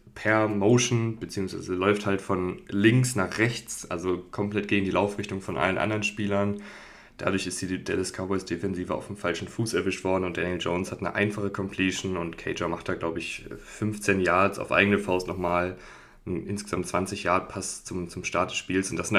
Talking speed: 185 wpm